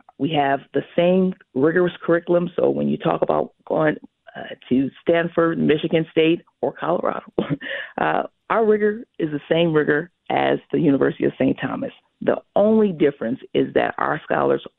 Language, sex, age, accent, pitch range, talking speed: English, female, 40-59, American, 140-175 Hz, 160 wpm